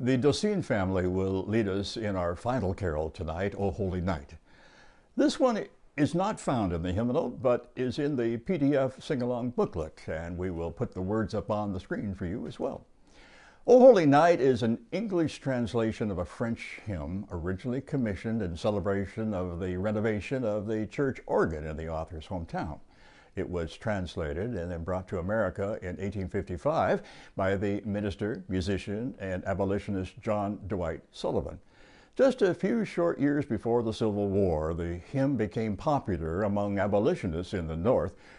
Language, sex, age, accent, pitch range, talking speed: English, male, 60-79, American, 90-120 Hz, 165 wpm